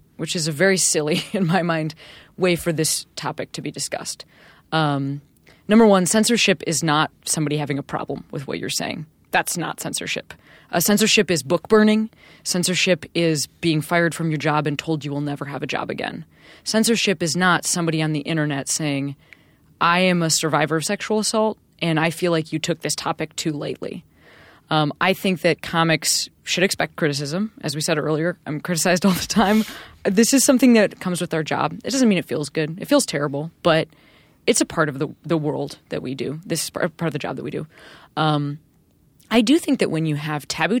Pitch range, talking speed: 155-185 Hz, 205 wpm